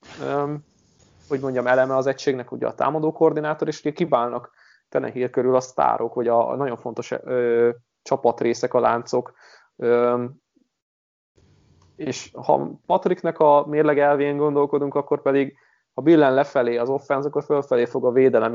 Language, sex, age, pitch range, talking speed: Hungarian, male, 20-39, 120-145 Hz, 145 wpm